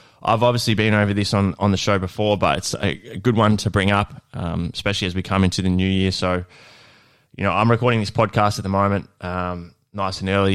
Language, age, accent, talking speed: English, 20-39, Australian, 235 wpm